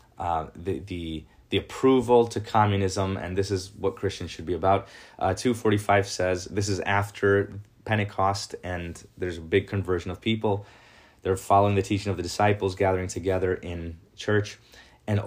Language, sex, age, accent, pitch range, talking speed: English, male, 20-39, American, 95-110 Hz, 170 wpm